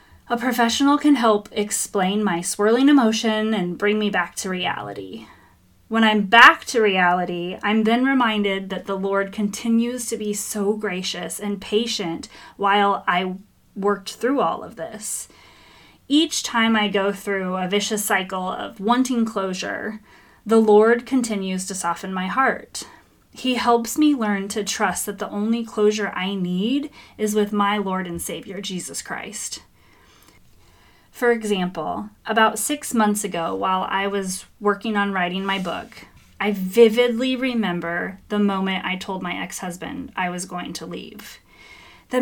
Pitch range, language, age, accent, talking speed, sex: 185-225 Hz, English, 30-49, American, 150 wpm, female